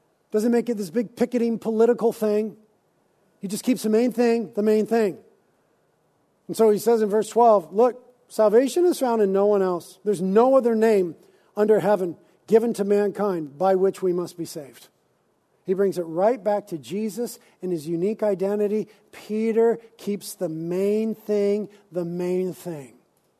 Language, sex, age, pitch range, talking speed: English, male, 50-69, 195-235 Hz, 170 wpm